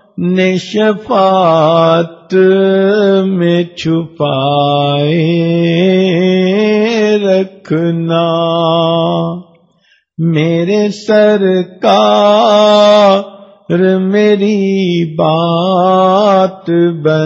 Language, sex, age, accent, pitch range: English, male, 50-69, Indian, 165-200 Hz